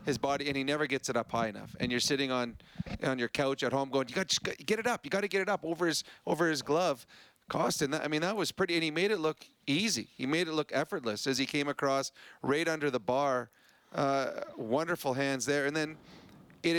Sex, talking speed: male, 245 wpm